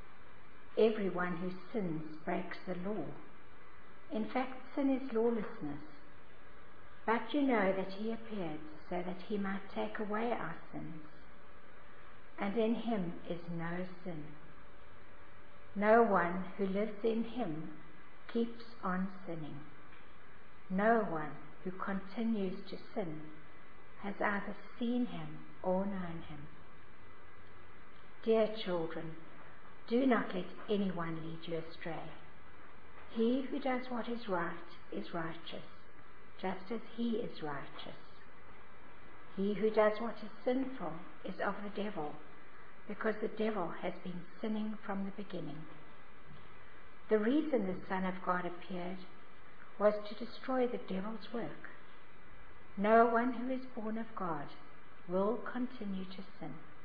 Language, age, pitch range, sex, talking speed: English, 60-79, 170-225 Hz, female, 125 wpm